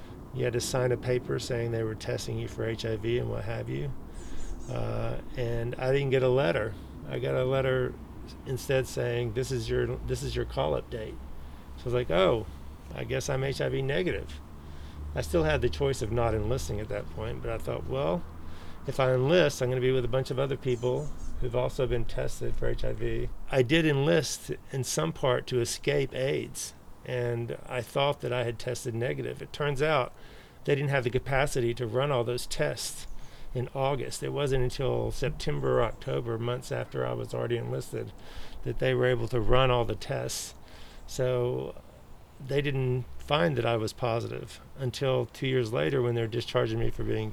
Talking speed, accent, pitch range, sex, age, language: 190 wpm, American, 110-130 Hz, male, 40-59, English